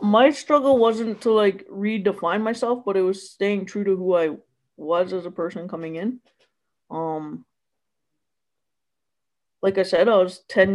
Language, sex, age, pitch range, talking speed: English, female, 20-39, 175-210 Hz, 155 wpm